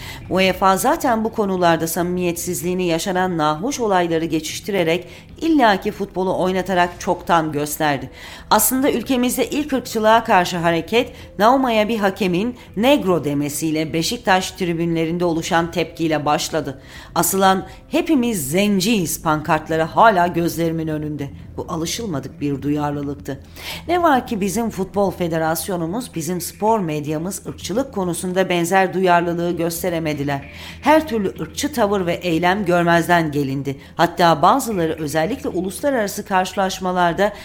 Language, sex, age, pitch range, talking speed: Turkish, female, 40-59, 160-210 Hz, 110 wpm